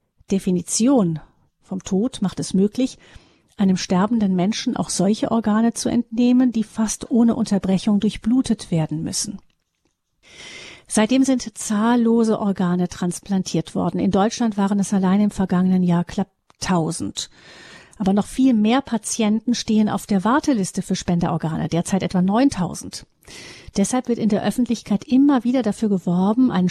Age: 40-59